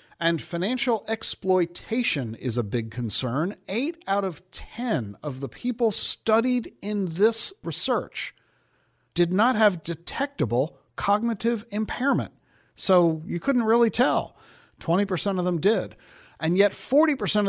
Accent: American